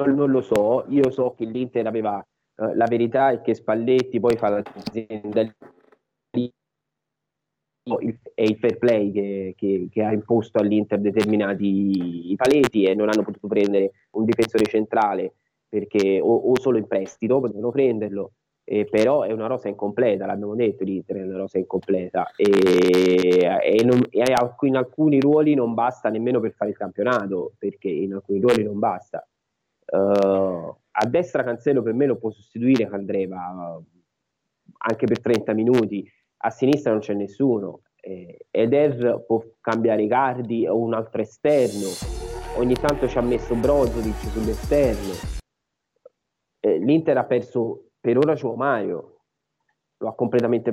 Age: 20-39